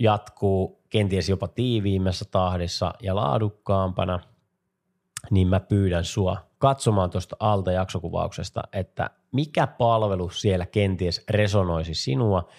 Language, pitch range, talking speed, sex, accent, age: Finnish, 90-110 Hz, 105 wpm, male, native, 30-49